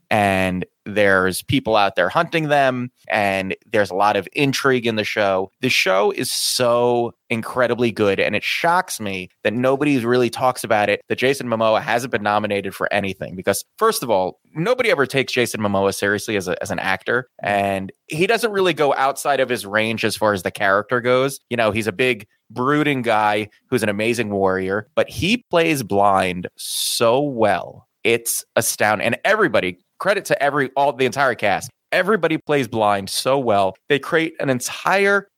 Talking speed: 180 wpm